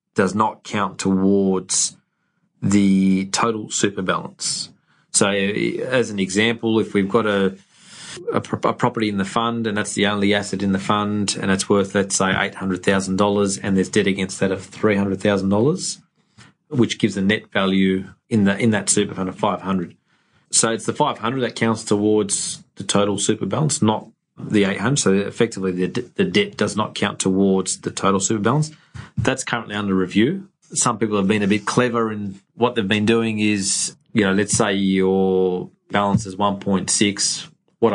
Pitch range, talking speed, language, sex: 95-115 Hz, 175 wpm, English, male